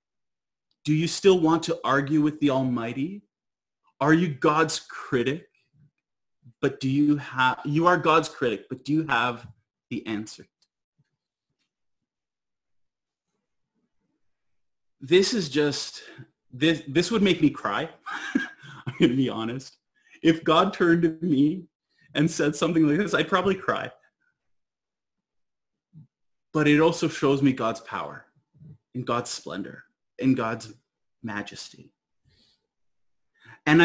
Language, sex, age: English, male, 30-49